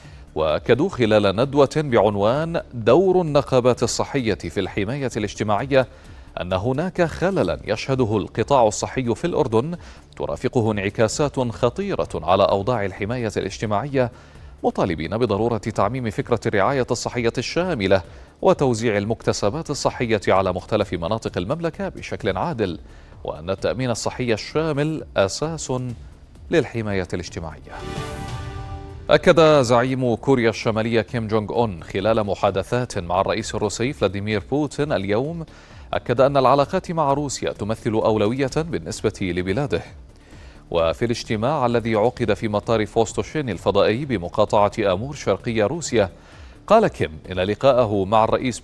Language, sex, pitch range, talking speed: Arabic, male, 100-130 Hz, 110 wpm